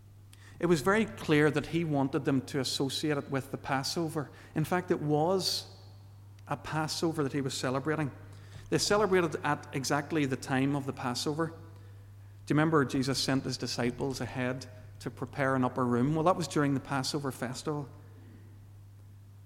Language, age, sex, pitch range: English, 40-59, male, 100-150 Hz